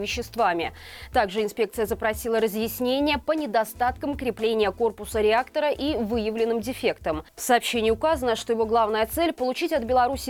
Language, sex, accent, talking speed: Russian, female, native, 135 wpm